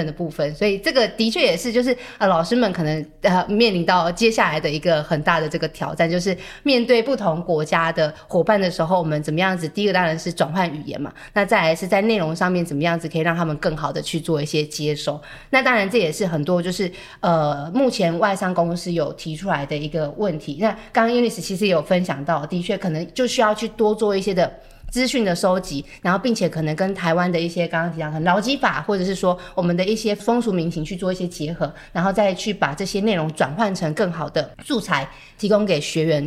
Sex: female